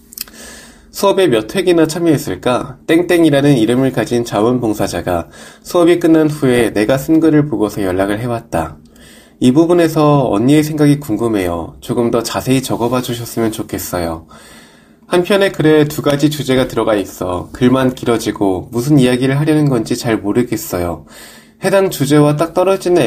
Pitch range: 115-155 Hz